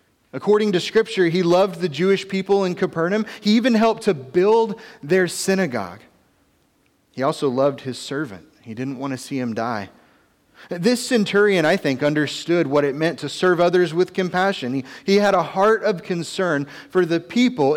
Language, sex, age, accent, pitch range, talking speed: English, male, 30-49, American, 145-200 Hz, 175 wpm